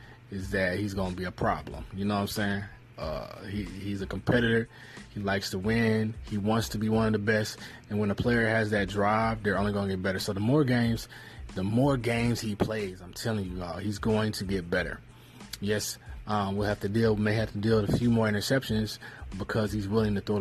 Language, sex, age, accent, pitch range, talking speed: English, male, 20-39, American, 100-115 Hz, 230 wpm